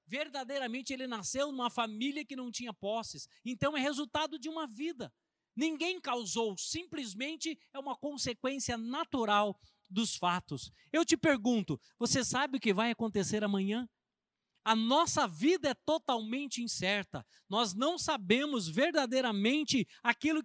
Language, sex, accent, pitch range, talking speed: Portuguese, male, Brazilian, 215-290 Hz, 130 wpm